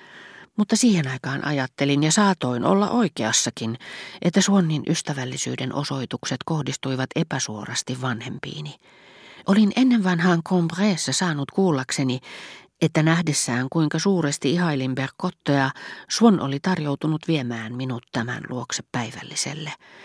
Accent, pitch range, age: native, 125-165 Hz, 40-59